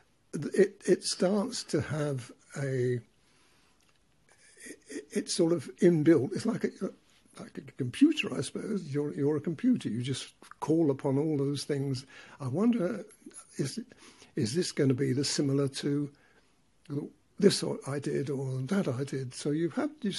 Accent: British